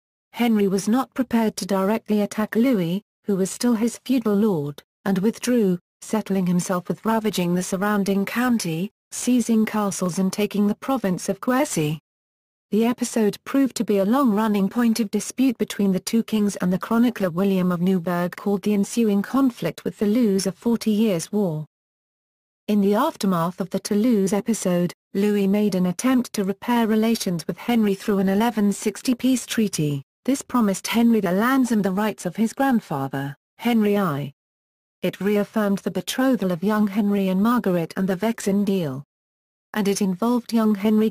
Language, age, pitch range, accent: English, 40-59, 185-225 Hz, British